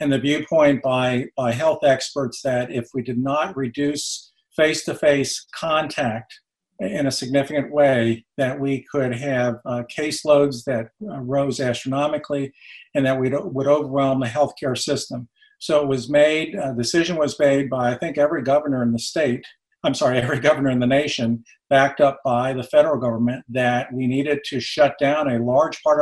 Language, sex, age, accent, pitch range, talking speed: English, male, 50-69, American, 125-150 Hz, 170 wpm